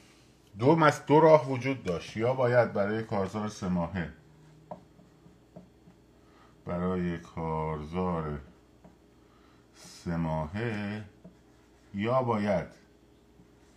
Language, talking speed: Persian, 65 wpm